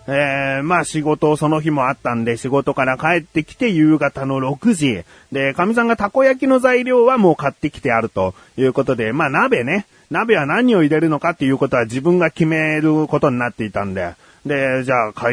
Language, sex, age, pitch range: Japanese, male, 30-49, 130-195 Hz